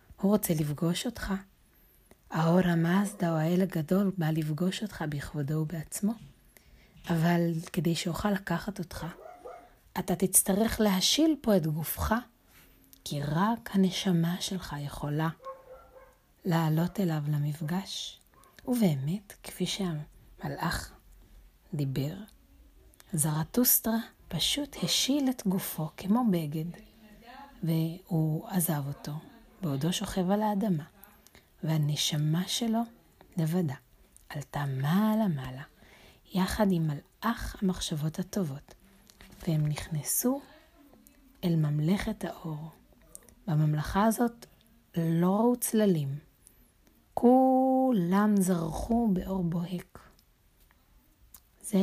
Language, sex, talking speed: Hebrew, female, 90 wpm